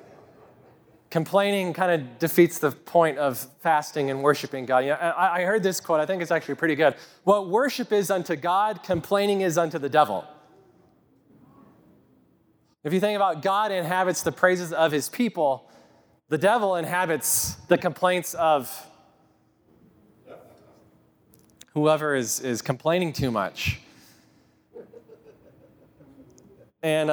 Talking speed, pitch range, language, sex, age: 130 wpm, 145-180 Hz, English, male, 30-49